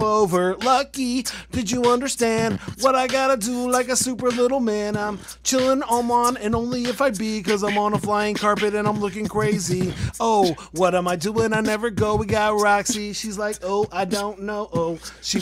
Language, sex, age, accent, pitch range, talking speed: English, male, 30-49, American, 200-240 Hz, 200 wpm